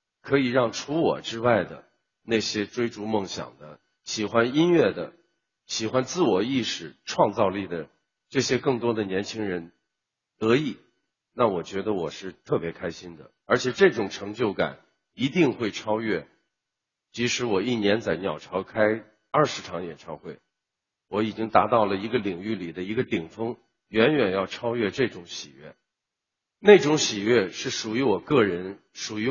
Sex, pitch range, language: male, 95-130 Hz, Chinese